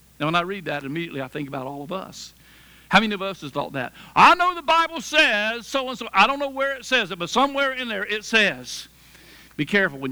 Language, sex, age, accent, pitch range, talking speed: English, male, 60-79, American, 170-245 Hz, 255 wpm